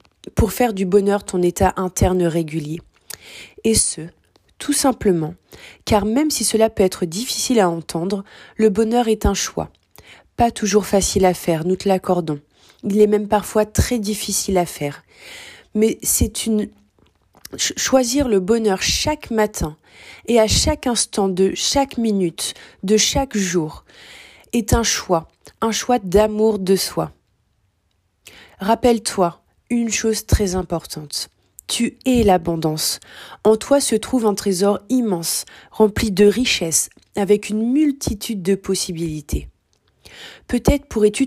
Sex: female